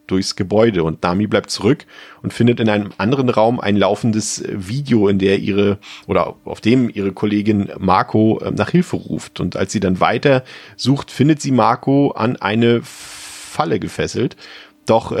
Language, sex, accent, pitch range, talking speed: German, male, German, 100-115 Hz, 160 wpm